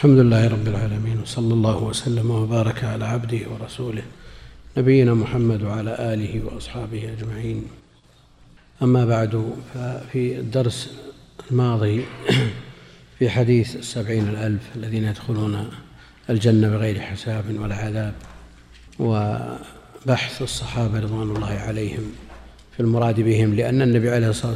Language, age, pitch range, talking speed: Arabic, 50-69, 105-120 Hz, 110 wpm